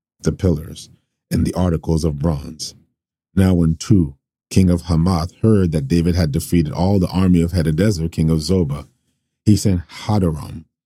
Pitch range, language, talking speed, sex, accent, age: 80-90 Hz, English, 160 wpm, male, American, 40-59